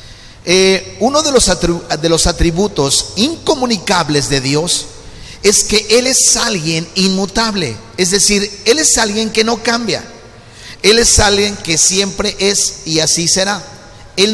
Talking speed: 140 wpm